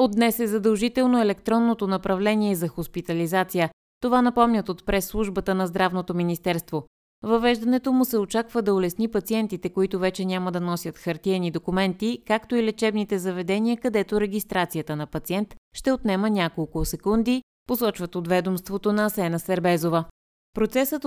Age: 30-49